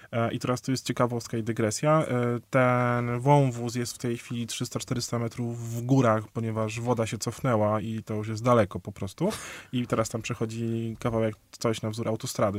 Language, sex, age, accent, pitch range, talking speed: Polish, male, 20-39, native, 115-140 Hz, 175 wpm